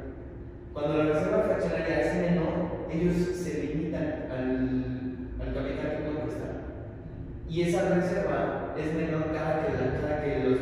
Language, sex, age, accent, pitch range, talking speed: Spanish, male, 30-49, Mexican, 130-160 Hz, 145 wpm